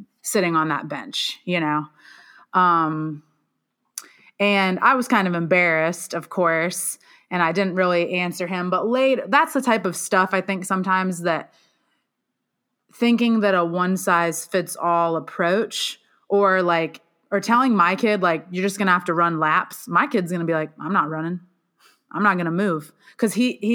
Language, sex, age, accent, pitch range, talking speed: English, female, 20-39, American, 170-205 Hz, 170 wpm